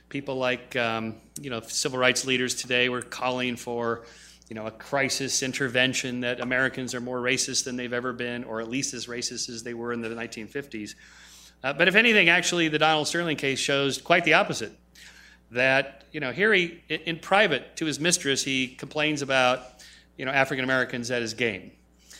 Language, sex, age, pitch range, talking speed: English, male, 40-59, 120-155 Hz, 190 wpm